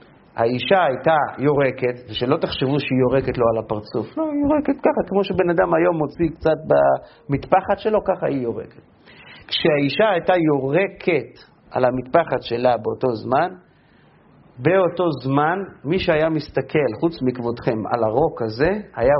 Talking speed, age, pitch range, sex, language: 140 wpm, 40-59, 125-175 Hz, male, Hebrew